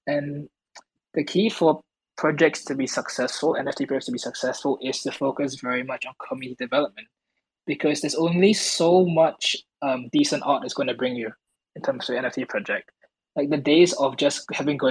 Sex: male